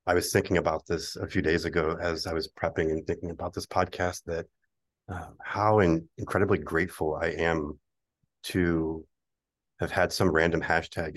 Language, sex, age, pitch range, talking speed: English, male, 30-49, 80-90 Hz, 165 wpm